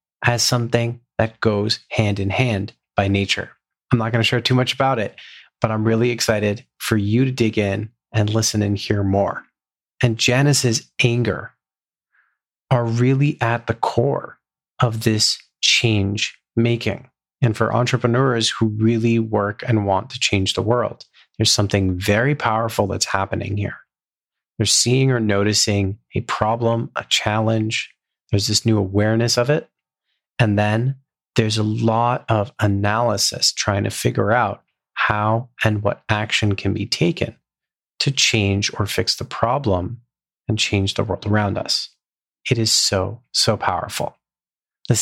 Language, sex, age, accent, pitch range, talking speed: English, male, 30-49, American, 105-120 Hz, 150 wpm